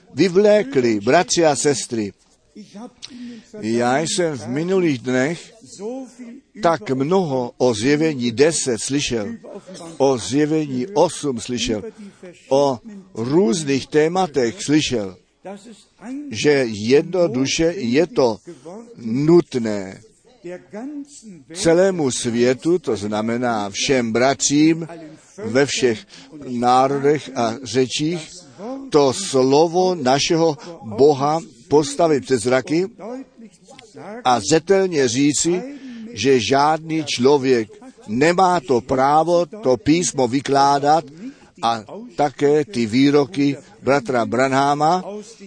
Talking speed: 85 wpm